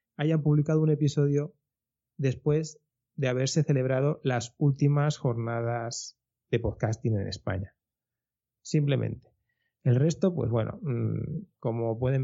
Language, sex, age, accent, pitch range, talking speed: Spanish, male, 20-39, Spanish, 120-145 Hz, 110 wpm